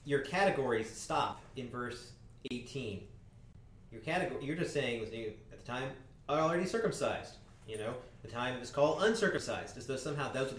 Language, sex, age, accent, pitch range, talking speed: English, male, 30-49, American, 115-155 Hz, 175 wpm